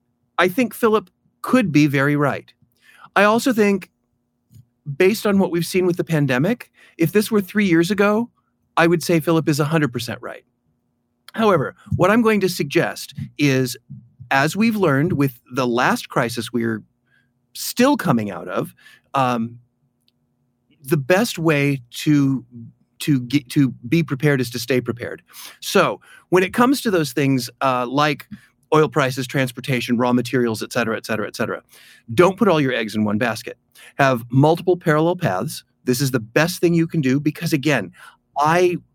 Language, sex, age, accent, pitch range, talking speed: English, male, 40-59, American, 125-180 Hz, 160 wpm